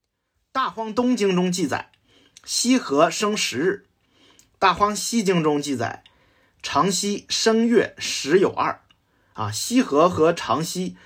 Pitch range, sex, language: 170-240 Hz, male, Chinese